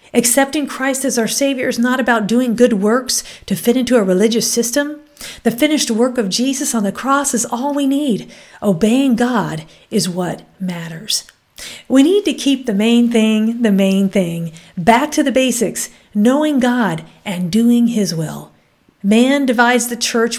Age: 50-69